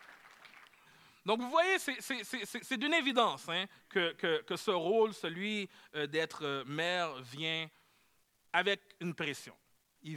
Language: French